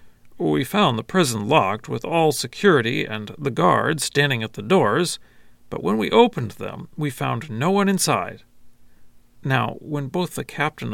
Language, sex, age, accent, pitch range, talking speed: English, male, 40-59, American, 120-175 Hz, 165 wpm